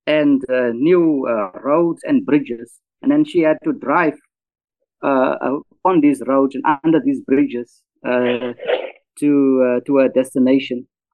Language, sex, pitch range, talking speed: English, male, 120-155 Hz, 150 wpm